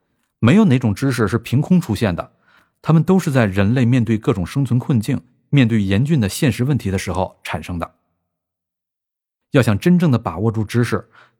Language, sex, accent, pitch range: Chinese, male, native, 105-130 Hz